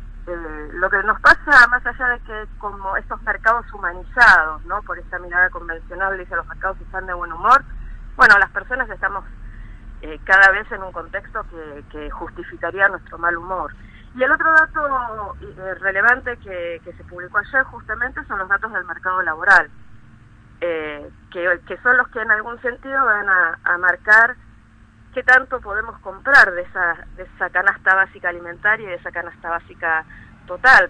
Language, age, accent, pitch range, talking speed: Spanish, 40-59, American, 165-210 Hz, 170 wpm